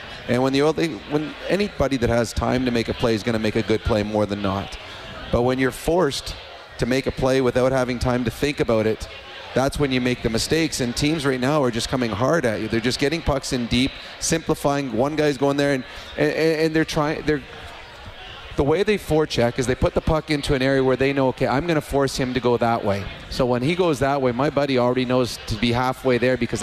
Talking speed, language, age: 250 wpm, English, 30-49